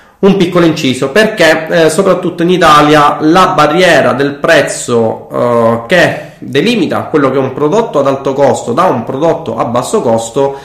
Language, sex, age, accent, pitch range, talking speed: Italian, male, 20-39, native, 115-140 Hz, 165 wpm